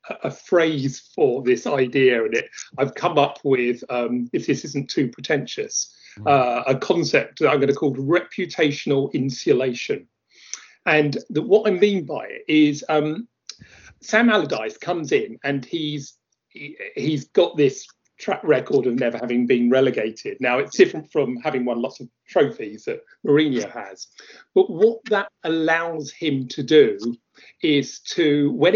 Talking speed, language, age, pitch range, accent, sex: 145 wpm, English, 40-59, 140-205 Hz, British, male